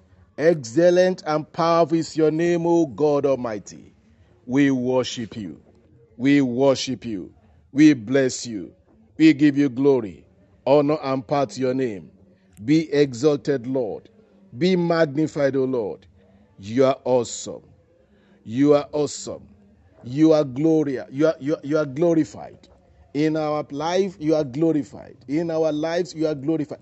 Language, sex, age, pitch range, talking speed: English, male, 50-69, 120-160 Hz, 140 wpm